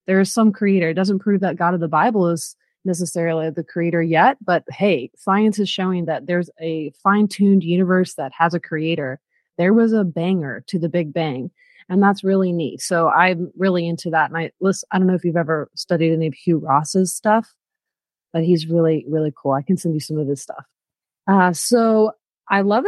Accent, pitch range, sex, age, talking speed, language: American, 170-200 Hz, female, 30-49, 205 wpm, English